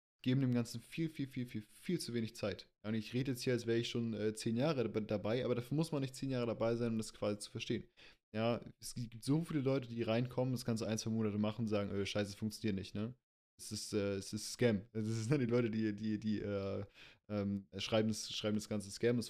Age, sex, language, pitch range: 20-39, male, German, 105-120 Hz